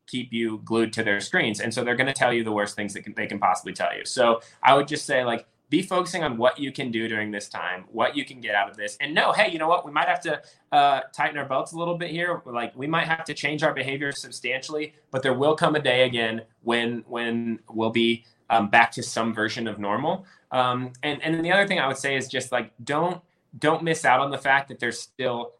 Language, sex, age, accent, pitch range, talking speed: English, male, 20-39, American, 110-145 Hz, 265 wpm